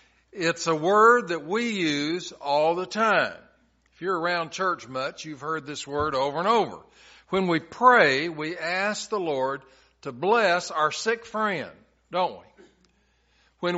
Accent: American